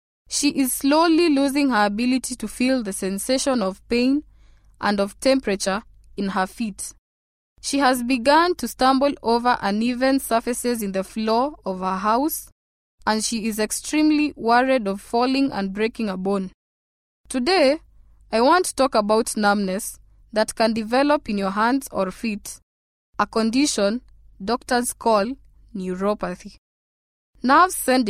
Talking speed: 140 wpm